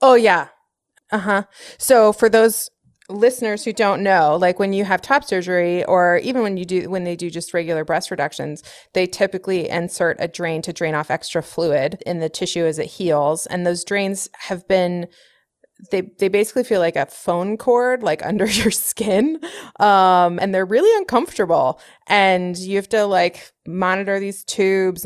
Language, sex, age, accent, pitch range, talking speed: English, female, 20-39, American, 175-220 Hz, 180 wpm